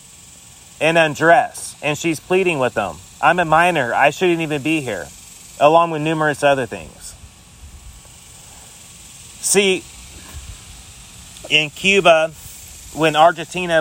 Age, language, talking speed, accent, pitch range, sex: 30-49, English, 110 wpm, American, 135-165 Hz, male